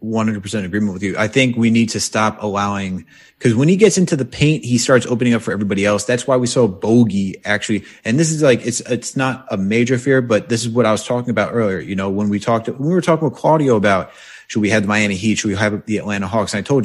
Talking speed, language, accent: 275 wpm, English, American